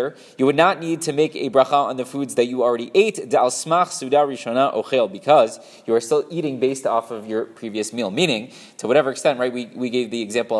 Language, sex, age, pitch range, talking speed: English, male, 20-39, 120-155 Hz, 205 wpm